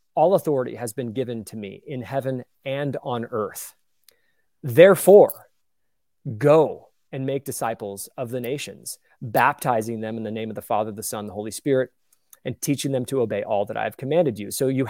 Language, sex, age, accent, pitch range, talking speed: English, male, 30-49, American, 120-160 Hz, 185 wpm